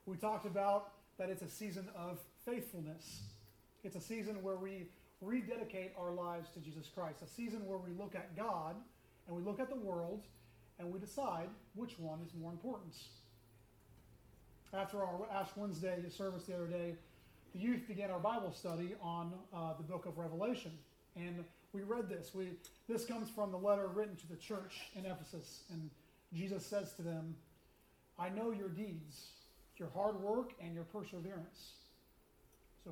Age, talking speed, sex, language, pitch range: 30-49, 170 wpm, male, English, 170-205 Hz